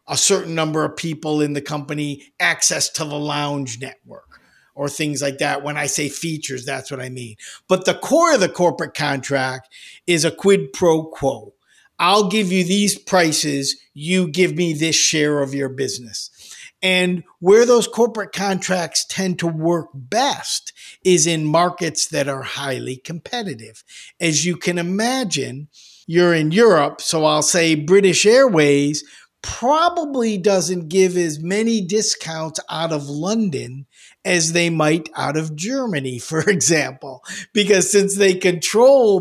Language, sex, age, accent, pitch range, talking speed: English, male, 50-69, American, 145-190 Hz, 150 wpm